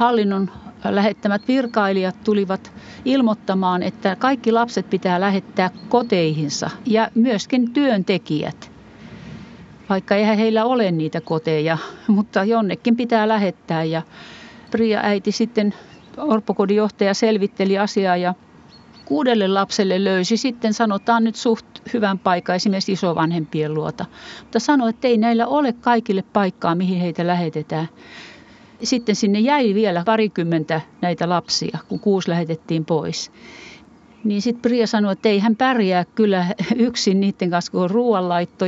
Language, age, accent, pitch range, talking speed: Finnish, 40-59, native, 180-225 Hz, 125 wpm